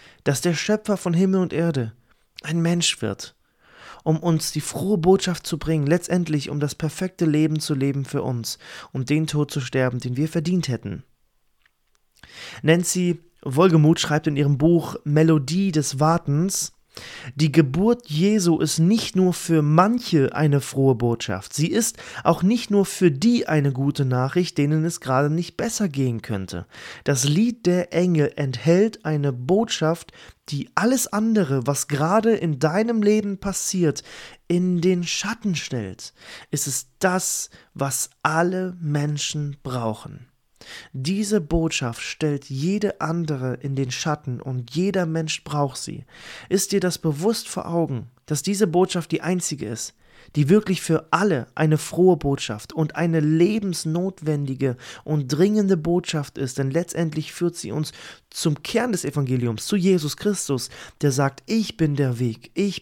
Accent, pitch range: German, 140-180 Hz